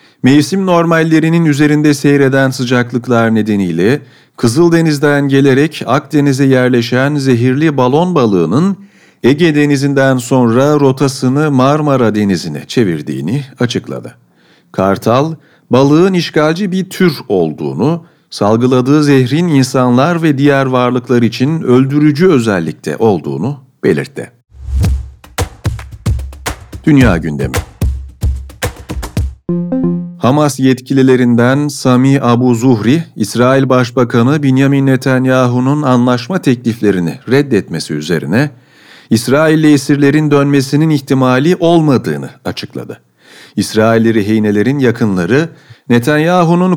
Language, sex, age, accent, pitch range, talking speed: Turkish, male, 40-59, native, 120-150 Hz, 80 wpm